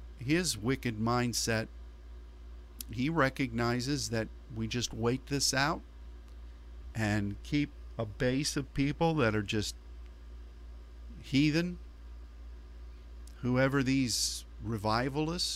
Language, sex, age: English, male, 50-69